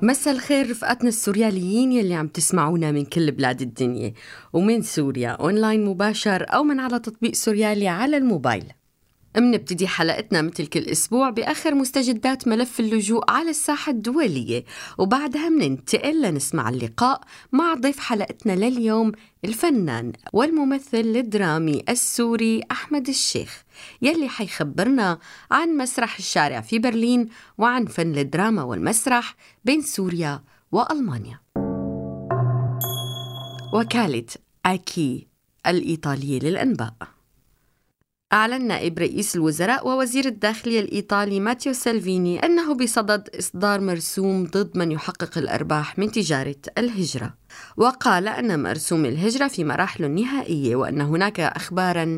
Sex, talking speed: female, 110 wpm